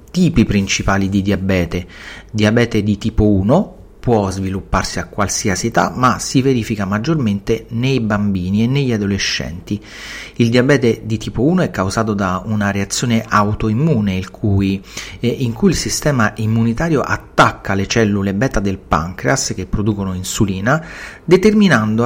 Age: 40-59